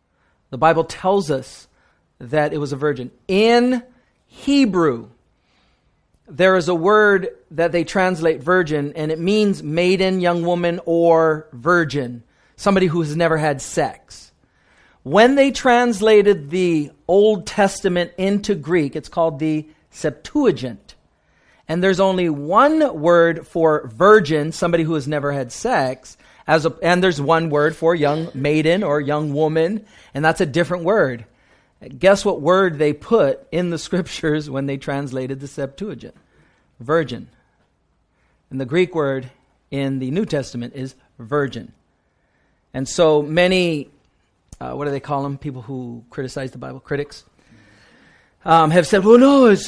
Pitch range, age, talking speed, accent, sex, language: 140-190 Hz, 40-59, 145 wpm, American, male, English